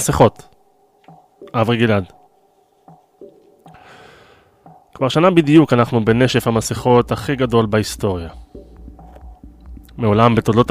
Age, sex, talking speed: 20-39, male, 75 wpm